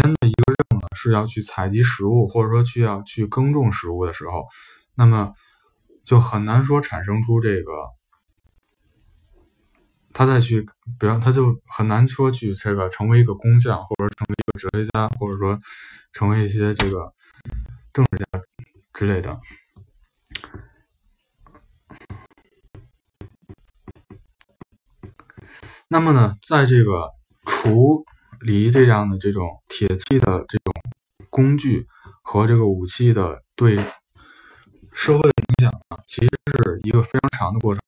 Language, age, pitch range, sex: Chinese, 20-39, 100-125 Hz, male